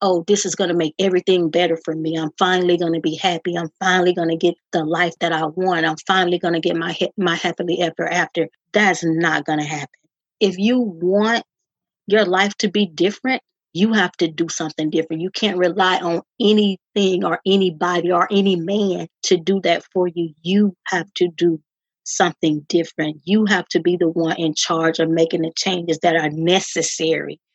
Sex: female